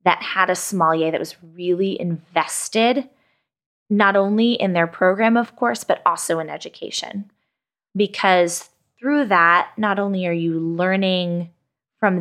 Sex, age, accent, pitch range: female, 20-39, American, 175-210 Hz